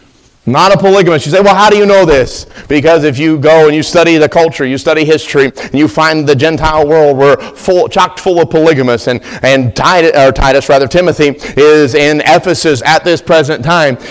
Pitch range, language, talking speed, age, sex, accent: 130-160 Hz, English, 210 wpm, 30-49, male, American